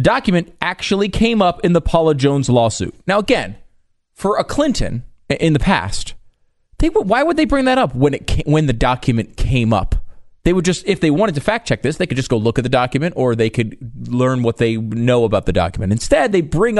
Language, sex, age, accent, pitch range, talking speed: English, male, 30-49, American, 105-150 Hz, 230 wpm